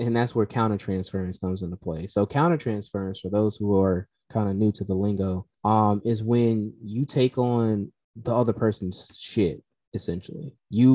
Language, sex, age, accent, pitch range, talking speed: English, male, 20-39, American, 95-115 Hz, 170 wpm